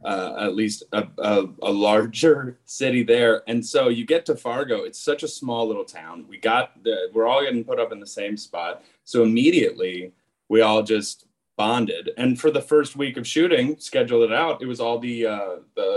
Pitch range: 115-170 Hz